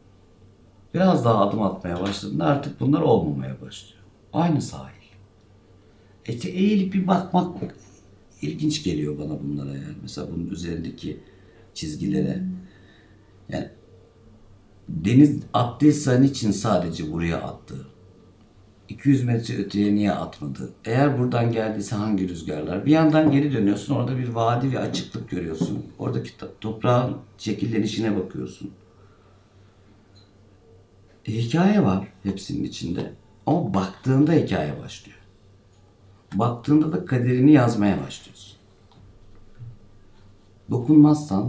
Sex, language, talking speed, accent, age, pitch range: male, Turkish, 105 wpm, native, 60-79, 95-125 Hz